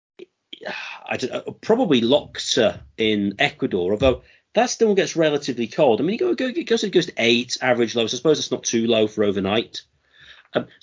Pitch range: 110-155 Hz